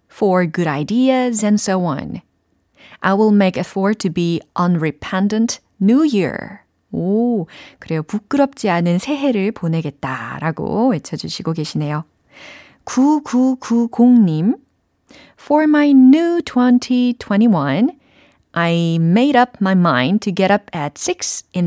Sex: female